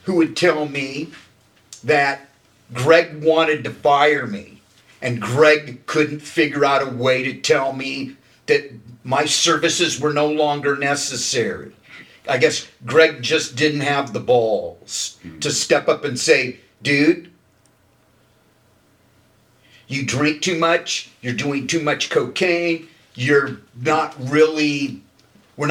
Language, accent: English, American